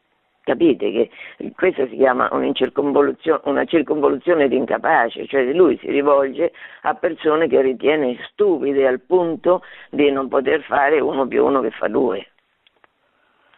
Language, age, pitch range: Italian, 50-69, 160-240 Hz